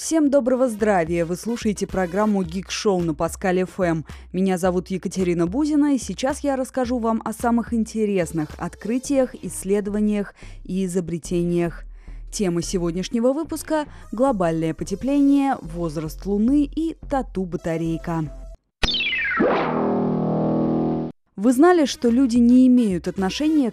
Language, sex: Russian, female